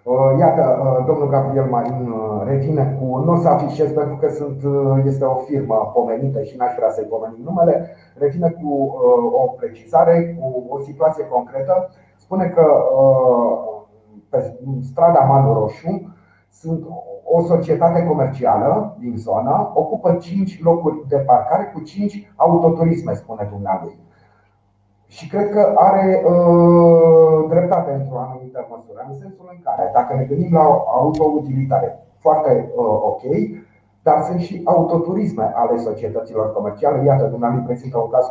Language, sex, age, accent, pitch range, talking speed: Romanian, male, 30-49, native, 125-170 Hz, 140 wpm